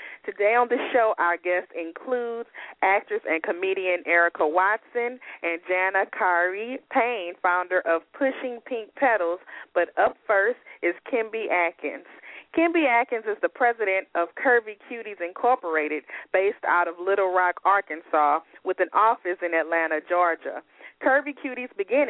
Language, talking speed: English, 140 wpm